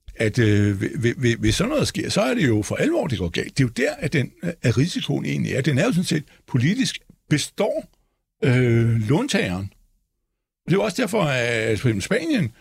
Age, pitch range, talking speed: 60-79, 115-155 Hz, 195 wpm